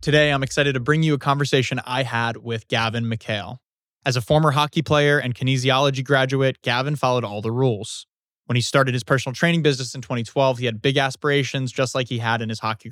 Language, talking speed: English, 215 wpm